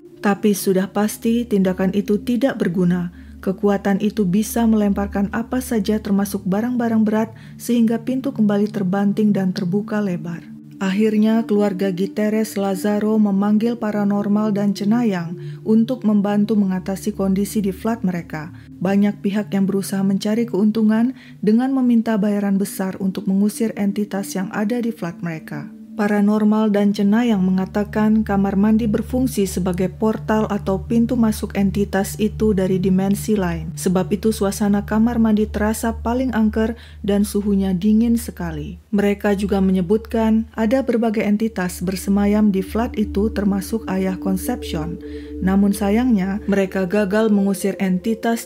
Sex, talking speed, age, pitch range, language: female, 130 wpm, 30-49, 195-220 Hz, Indonesian